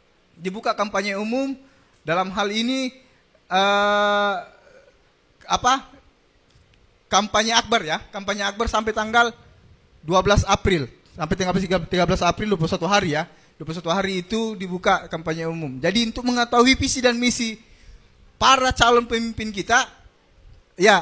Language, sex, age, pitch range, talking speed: Indonesian, male, 20-39, 175-235 Hz, 120 wpm